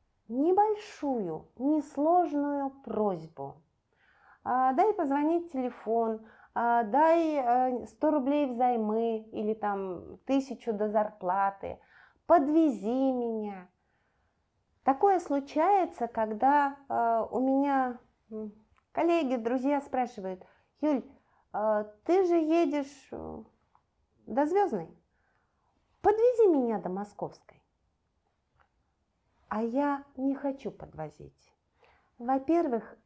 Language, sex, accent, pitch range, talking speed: Russian, female, native, 195-280 Hz, 75 wpm